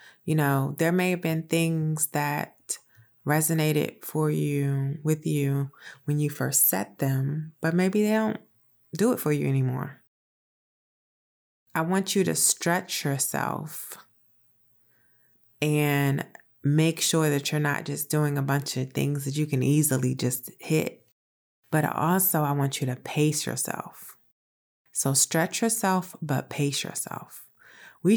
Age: 20-39